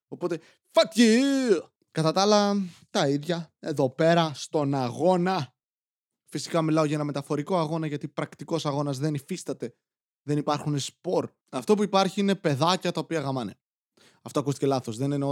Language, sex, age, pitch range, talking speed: Greek, male, 20-39, 145-225 Hz, 155 wpm